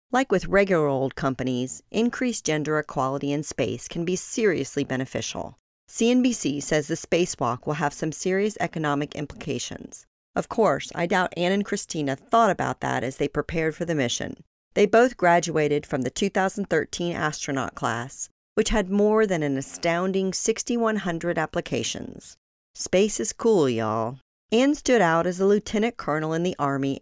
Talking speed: 155 wpm